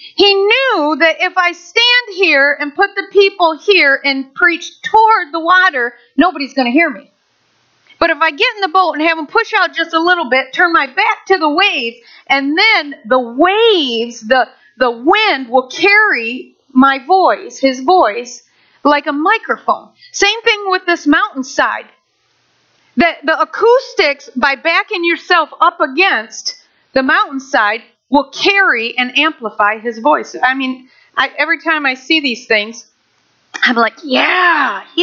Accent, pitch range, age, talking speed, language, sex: American, 260-370 Hz, 40-59, 160 wpm, English, female